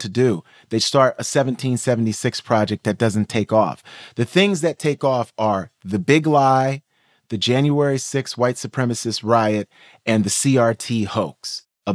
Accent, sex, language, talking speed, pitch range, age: American, male, English, 155 wpm, 105-130 Hz, 30-49